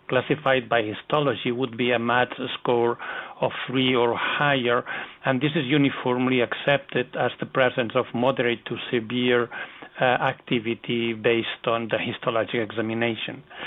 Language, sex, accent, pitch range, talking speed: English, male, Spanish, 120-145 Hz, 135 wpm